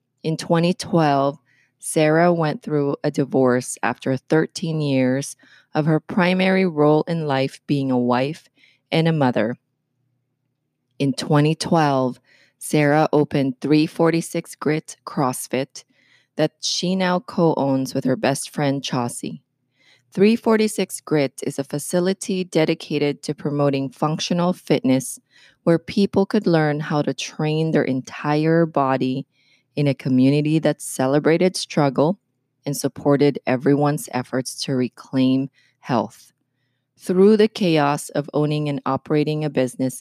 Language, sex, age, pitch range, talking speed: English, female, 20-39, 130-160 Hz, 120 wpm